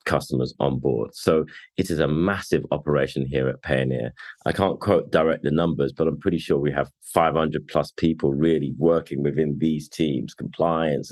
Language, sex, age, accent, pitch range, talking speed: English, male, 30-49, British, 75-85 Hz, 180 wpm